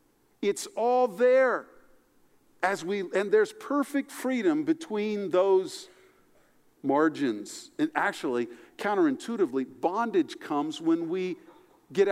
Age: 50-69